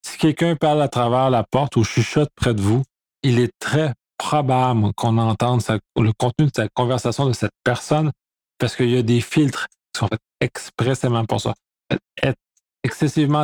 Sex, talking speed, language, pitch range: male, 180 wpm, French, 115-140 Hz